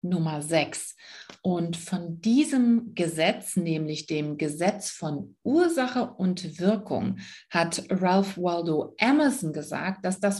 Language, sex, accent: German, female, German